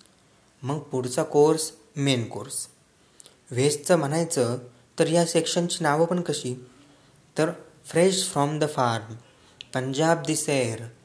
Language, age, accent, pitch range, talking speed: Hindi, 20-39, native, 130-165 Hz, 100 wpm